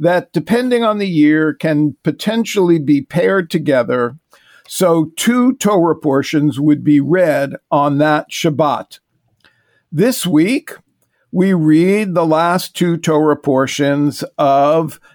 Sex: male